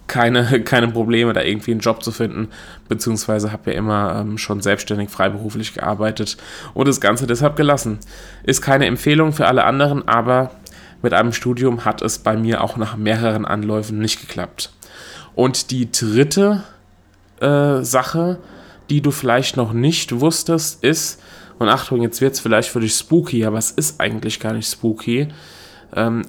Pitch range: 110-125 Hz